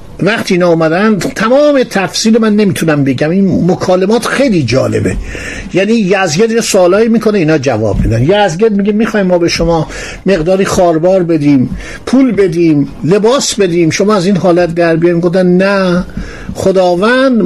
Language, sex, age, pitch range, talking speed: Persian, male, 50-69, 165-220 Hz, 140 wpm